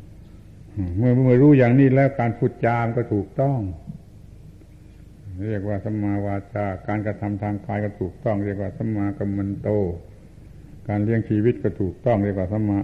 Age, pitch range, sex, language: 70-89, 100-120 Hz, male, Thai